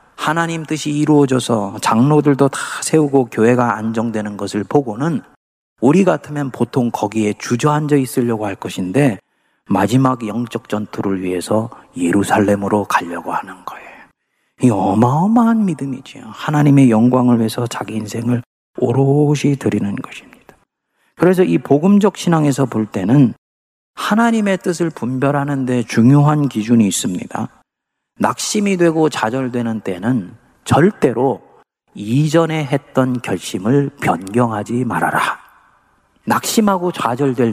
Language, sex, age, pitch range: Korean, male, 40-59, 115-170 Hz